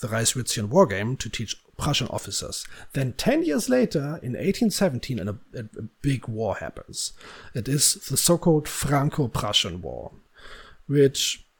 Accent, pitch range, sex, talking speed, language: German, 115-165 Hz, male, 145 wpm, English